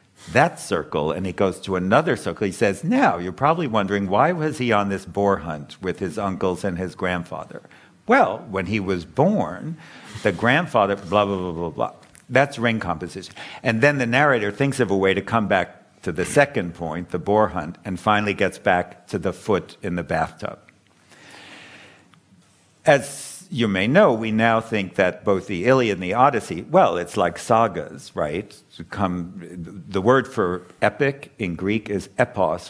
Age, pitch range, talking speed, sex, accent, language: 60-79, 90-110 Hz, 180 wpm, male, American, English